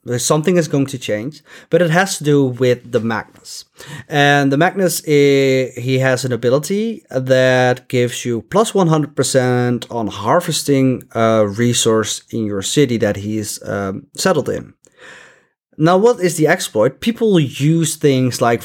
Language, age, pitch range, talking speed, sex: English, 30-49, 115-150 Hz, 150 wpm, male